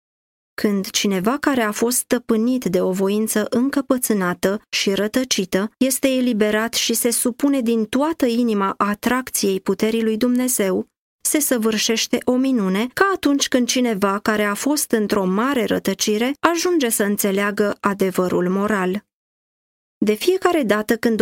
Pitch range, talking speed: 200-250 Hz, 135 wpm